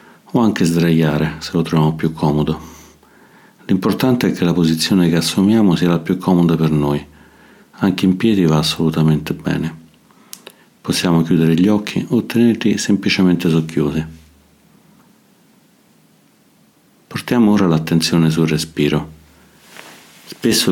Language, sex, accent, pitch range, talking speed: Italian, male, native, 80-90 Hz, 120 wpm